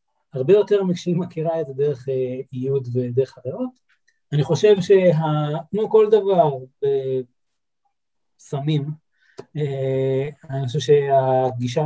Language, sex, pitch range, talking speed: Hebrew, male, 135-170 Hz, 115 wpm